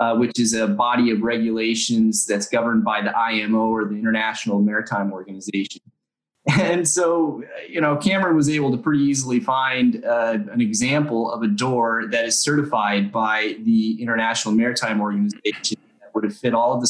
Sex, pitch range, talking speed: male, 115-155 Hz, 175 wpm